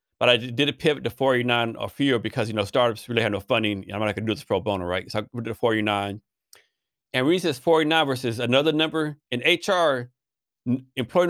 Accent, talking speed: American, 220 wpm